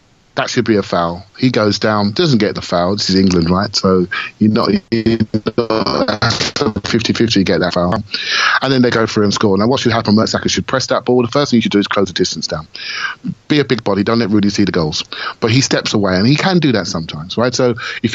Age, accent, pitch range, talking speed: 30-49, British, 100-125 Hz, 250 wpm